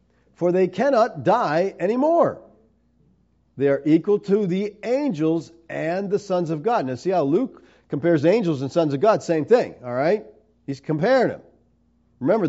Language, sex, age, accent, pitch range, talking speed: English, male, 50-69, American, 135-180 Hz, 165 wpm